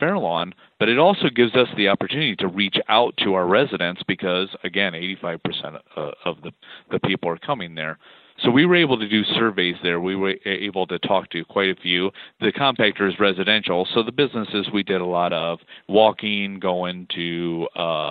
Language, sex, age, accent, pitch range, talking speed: English, male, 40-59, American, 90-105 Hz, 190 wpm